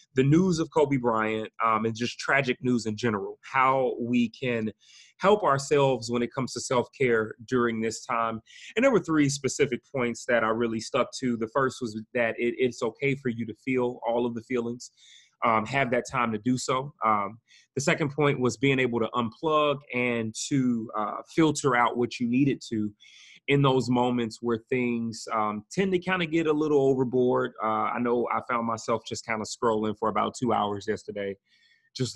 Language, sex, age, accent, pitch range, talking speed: English, male, 30-49, American, 115-140 Hz, 195 wpm